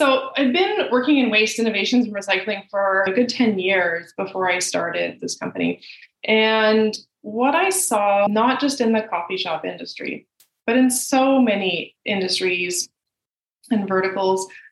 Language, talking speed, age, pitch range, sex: English, 150 wpm, 20-39, 190-240 Hz, female